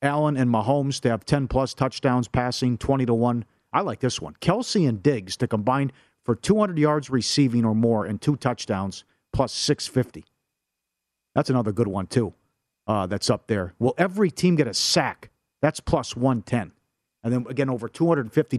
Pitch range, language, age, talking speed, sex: 120-150 Hz, English, 40-59, 180 wpm, male